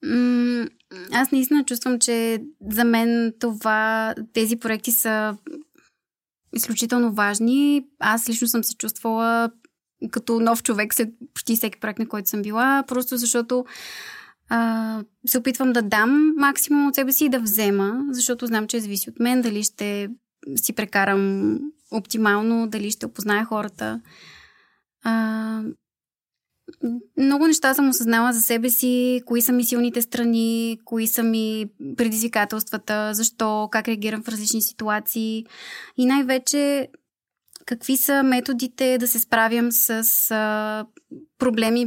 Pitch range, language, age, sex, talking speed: 220-250 Hz, Bulgarian, 20-39, female, 130 wpm